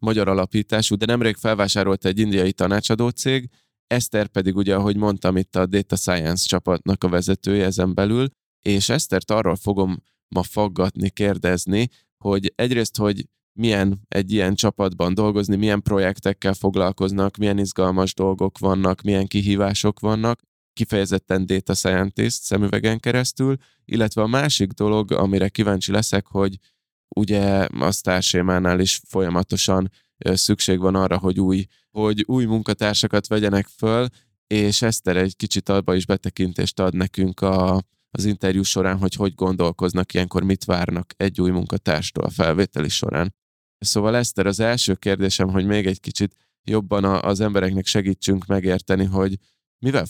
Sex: male